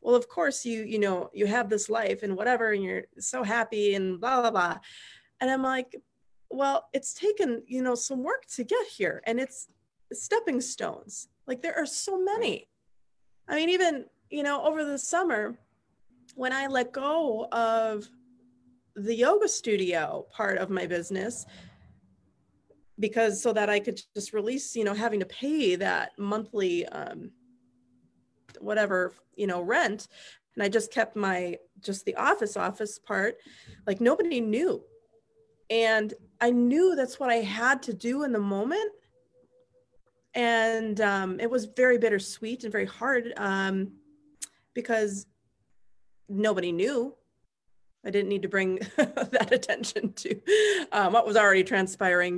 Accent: American